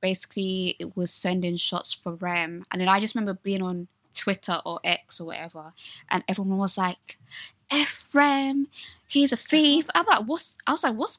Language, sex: English, female